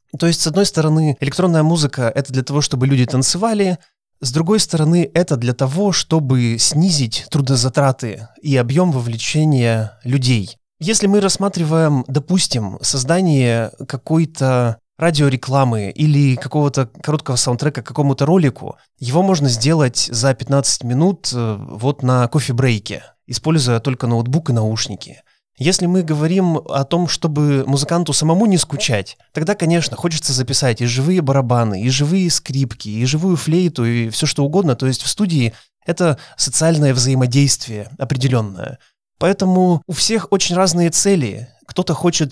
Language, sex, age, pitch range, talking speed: Russian, male, 20-39, 125-160 Hz, 140 wpm